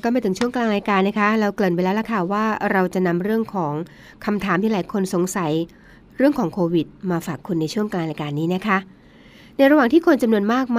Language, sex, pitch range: Thai, female, 180-225 Hz